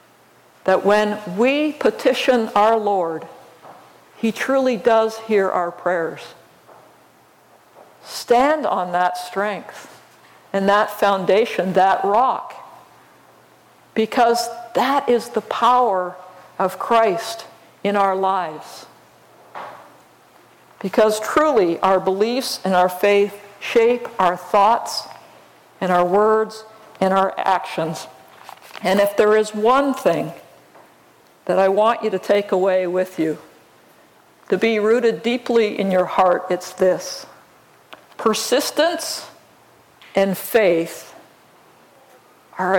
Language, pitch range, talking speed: English, 185-230 Hz, 105 wpm